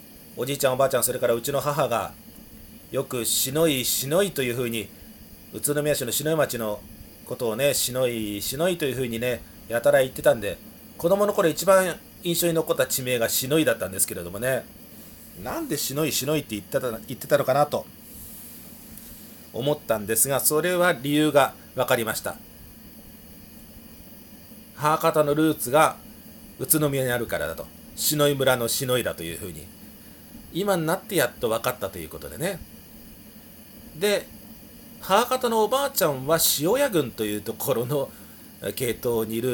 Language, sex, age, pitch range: Japanese, male, 40-59, 115-155 Hz